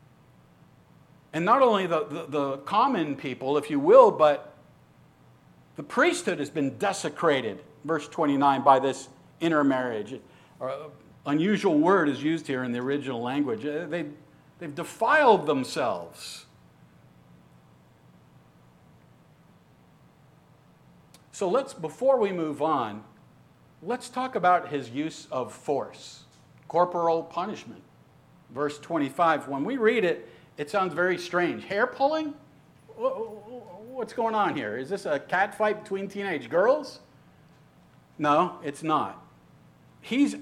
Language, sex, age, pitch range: English, male, 50-69, 135-195 Hz